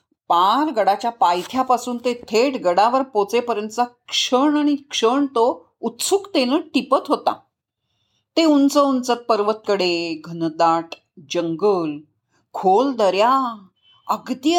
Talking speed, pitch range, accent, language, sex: 100 wpm, 195-280 Hz, native, Marathi, female